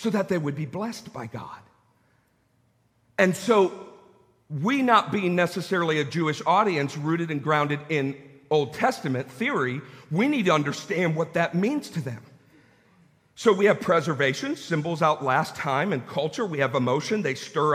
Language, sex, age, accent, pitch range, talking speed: English, male, 50-69, American, 155-245 Hz, 160 wpm